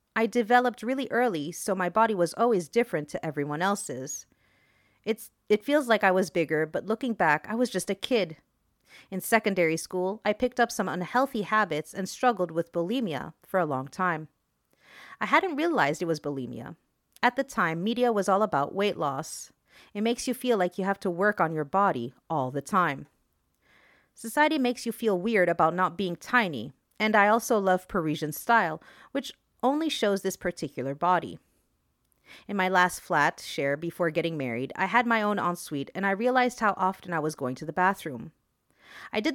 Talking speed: 185 wpm